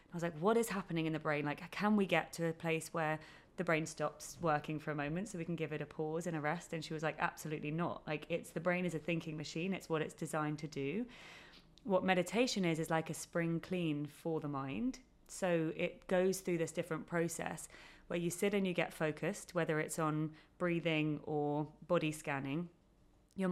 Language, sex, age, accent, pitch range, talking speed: English, female, 20-39, British, 150-175 Hz, 220 wpm